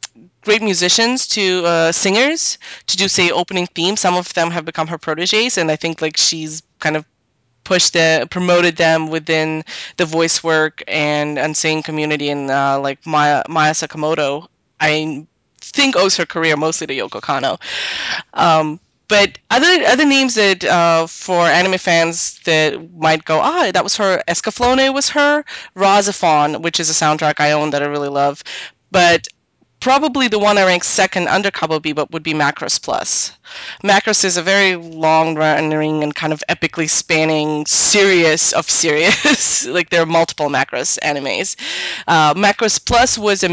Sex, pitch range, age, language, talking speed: female, 155-195 Hz, 20-39, English, 165 wpm